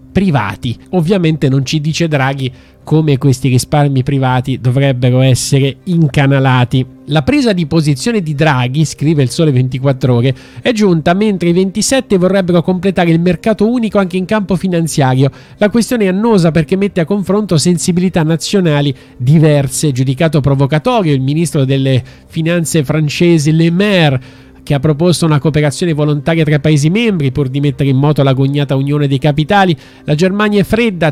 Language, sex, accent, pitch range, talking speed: Italian, male, native, 140-185 Hz, 155 wpm